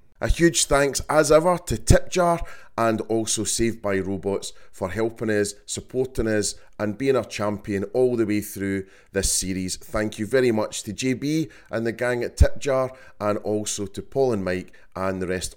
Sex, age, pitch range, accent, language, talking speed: male, 30-49, 95-120 Hz, British, English, 185 wpm